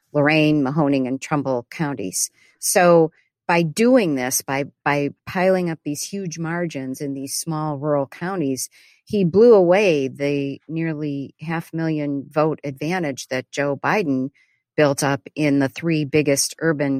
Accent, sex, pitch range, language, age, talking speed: American, female, 130-160 Hz, English, 50-69, 140 wpm